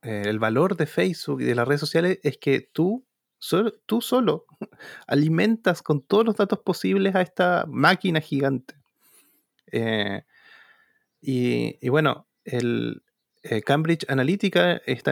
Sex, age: male, 30-49